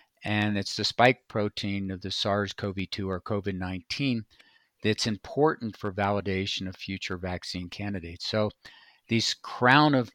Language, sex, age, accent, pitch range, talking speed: English, male, 50-69, American, 95-115 Hz, 130 wpm